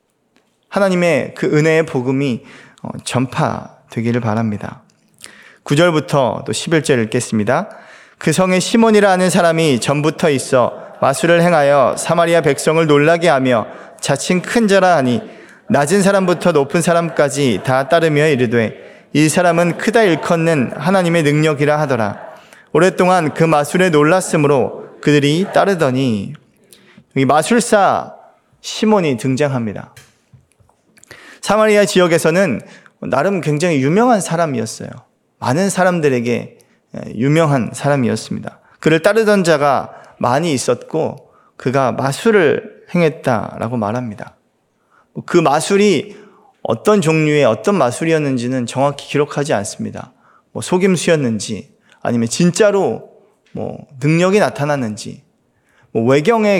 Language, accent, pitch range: Korean, native, 135-185 Hz